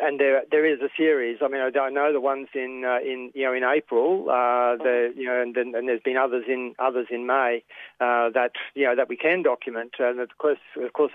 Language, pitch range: English, 125-145 Hz